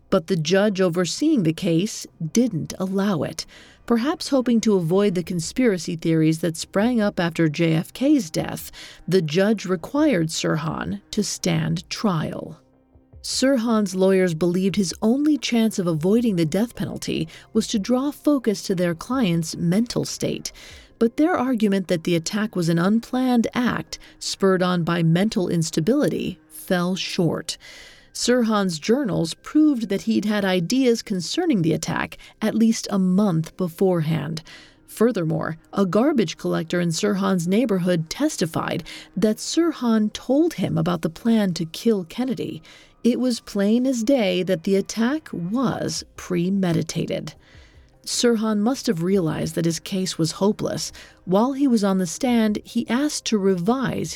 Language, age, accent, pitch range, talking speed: English, 40-59, American, 175-235 Hz, 140 wpm